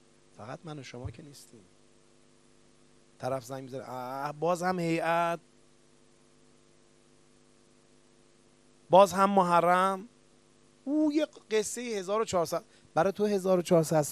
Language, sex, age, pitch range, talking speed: Persian, male, 30-49, 115-145 Hz, 90 wpm